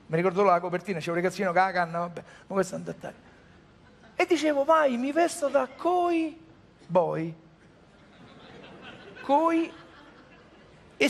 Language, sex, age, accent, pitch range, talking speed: Italian, male, 50-69, native, 195-285 Hz, 130 wpm